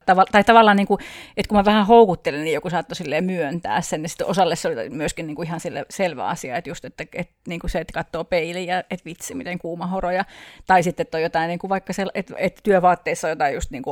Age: 30-49